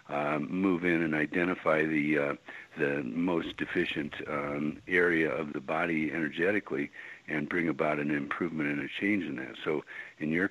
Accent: American